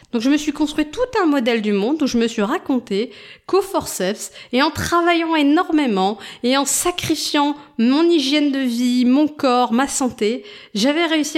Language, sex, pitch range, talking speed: French, female, 205-280 Hz, 180 wpm